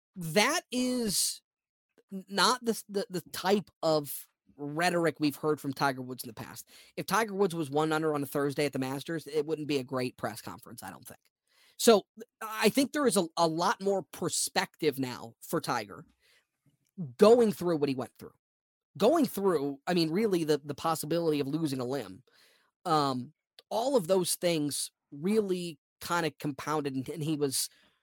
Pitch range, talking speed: 150-210 Hz, 180 wpm